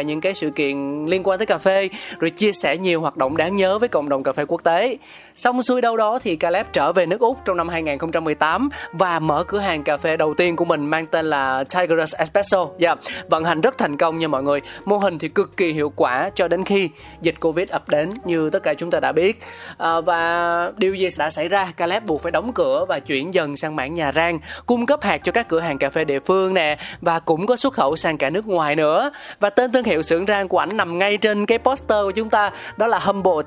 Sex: male